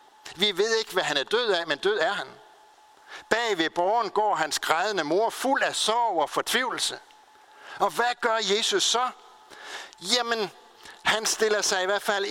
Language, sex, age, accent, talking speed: Danish, male, 60-79, native, 175 wpm